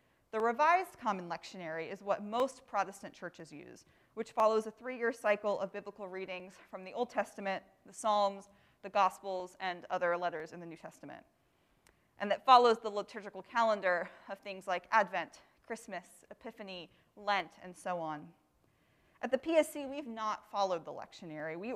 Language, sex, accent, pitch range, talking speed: English, female, American, 180-225 Hz, 160 wpm